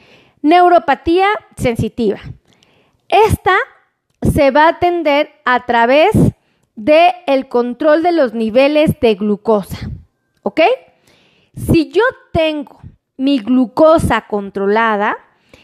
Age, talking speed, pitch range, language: 30-49, 90 wpm, 240-320 Hz, Spanish